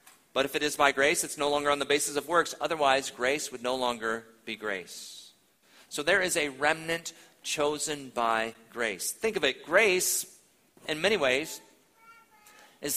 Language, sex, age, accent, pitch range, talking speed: English, male, 40-59, American, 135-180 Hz, 170 wpm